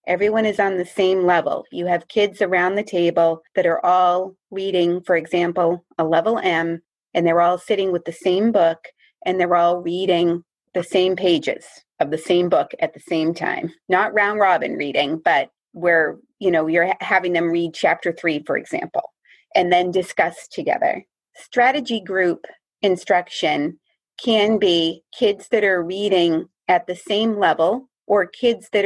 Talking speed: 165 wpm